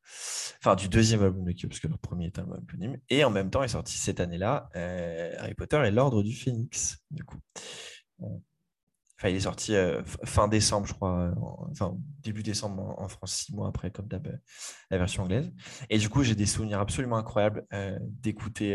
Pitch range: 95-120 Hz